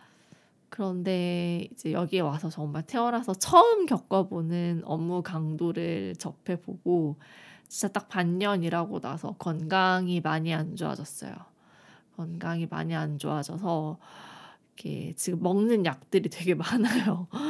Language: Korean